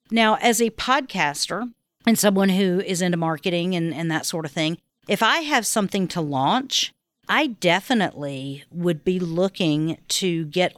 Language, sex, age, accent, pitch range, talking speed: English, female, 50-69, American, 160-195 Hz, 160 wpm